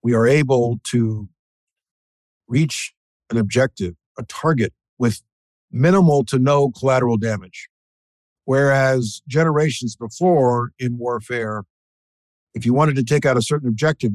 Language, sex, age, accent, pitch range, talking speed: English, male, 50-69, American, 110-135 Hz, 125 wpm